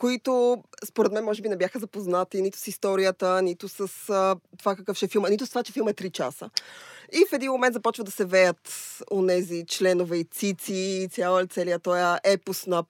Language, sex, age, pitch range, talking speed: Bulgarian, female, 20-39, 195-255 Hz, 205 wpm